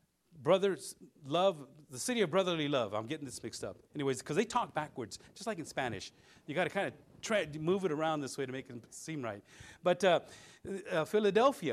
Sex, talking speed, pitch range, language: male, 205 wpm, 130-195 Hz, English